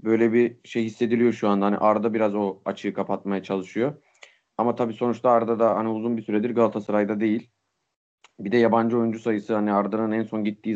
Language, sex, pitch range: Turkish, male, 105-125 Hz